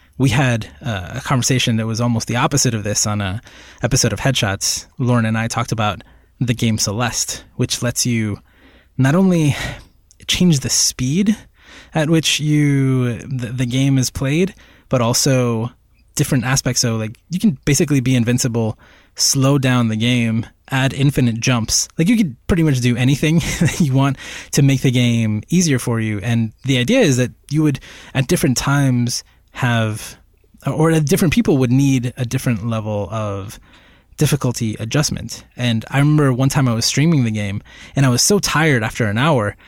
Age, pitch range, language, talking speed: 20-39, 115-140 Hz, English, 175 wpm